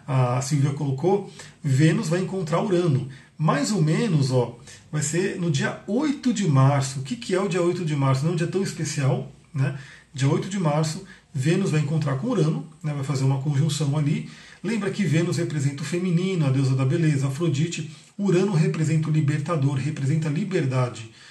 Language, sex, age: Portuguese, male, 40-59